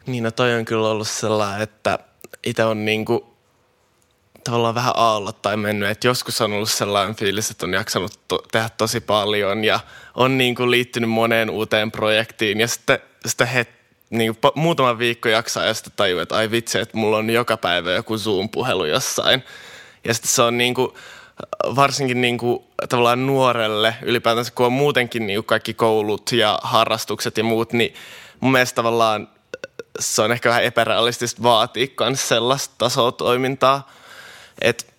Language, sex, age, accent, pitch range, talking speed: Finnish, male, 20-39, native, 110-125 Hz, 155 wpm